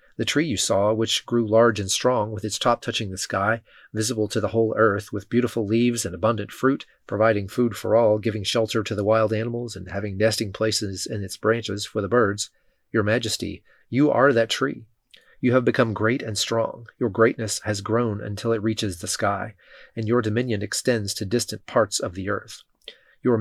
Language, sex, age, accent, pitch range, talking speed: English, male, 30-49, American, 105-120 Hz, 200 wpm